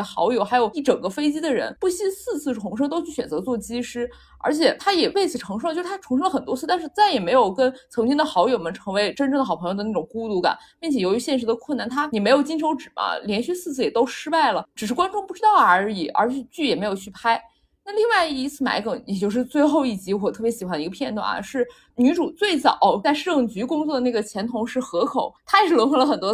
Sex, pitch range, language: female, 230-320 Hz, Chinese